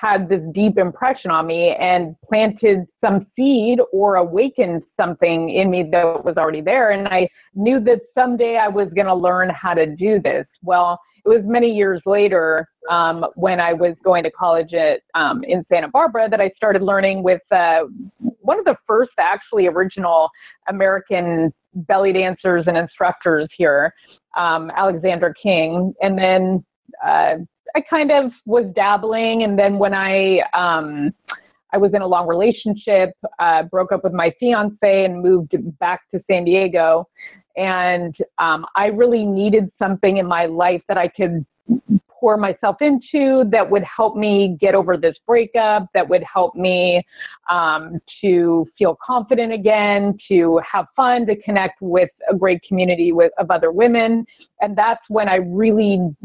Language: English